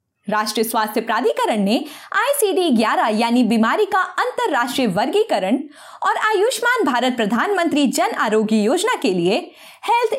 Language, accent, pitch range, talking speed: Hindi, native, 220-365 Hz, 125 wpm